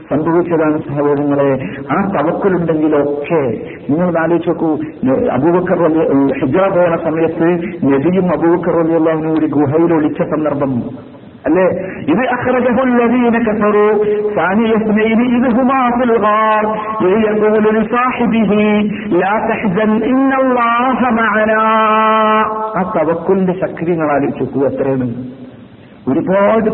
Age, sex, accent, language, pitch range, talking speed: 50-69, male, native, Malayalam, 160-225 Hz, 110 wpm